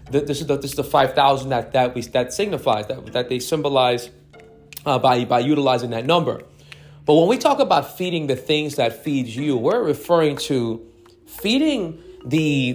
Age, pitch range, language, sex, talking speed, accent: 30-49, 130-155 Hz, English, male, 185 wpm, American